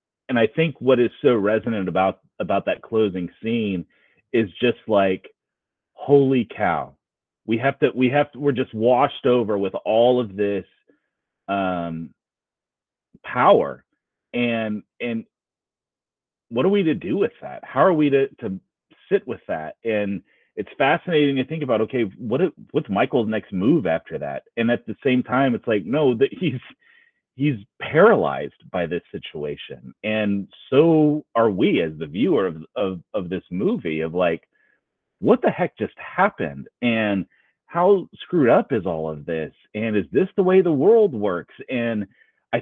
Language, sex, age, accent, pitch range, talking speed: English, male, 30-49, American, 105-150 Hz, 165 wpm